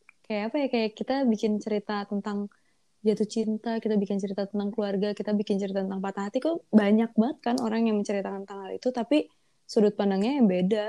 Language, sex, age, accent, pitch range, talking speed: Indonesian, female, 20-39, native, 195-225 Hz, 200 wpm